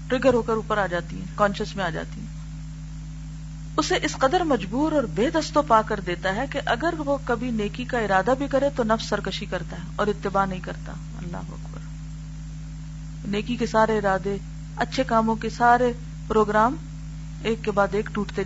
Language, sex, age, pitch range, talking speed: Urdu, female, 40-59, 155-235 Hz, 165 wpm